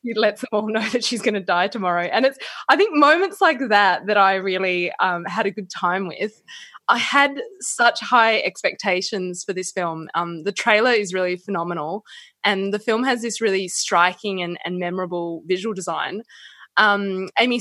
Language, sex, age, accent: English, female, 20-39, Australian